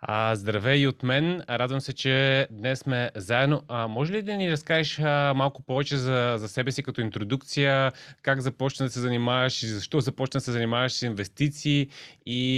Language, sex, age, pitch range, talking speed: Bulgarian, male, 30-49, 115-135 Hz, 170 wpm